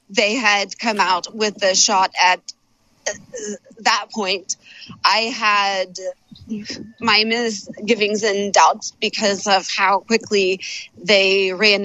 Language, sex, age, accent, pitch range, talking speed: English, female, 20-39, American, 185-220 Hz, 110 wpm